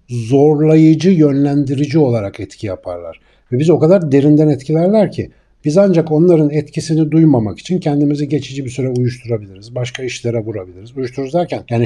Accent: native